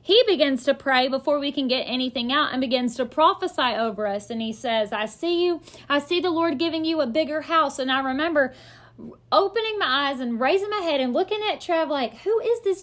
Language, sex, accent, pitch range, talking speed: English, female, American, 250-320 Hz, 230 wpm